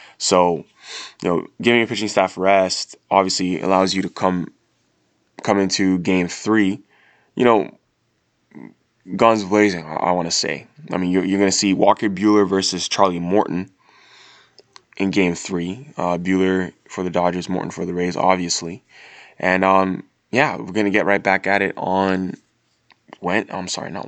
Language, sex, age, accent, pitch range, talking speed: English, male, 20-39, American, 90-100 Hz, 165 wpm